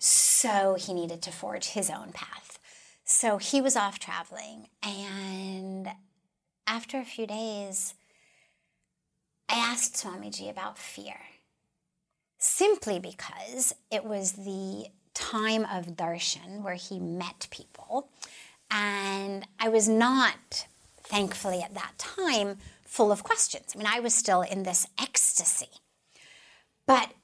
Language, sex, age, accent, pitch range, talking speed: English, female, 30-49, American, 190-245 Hz, 120 wpm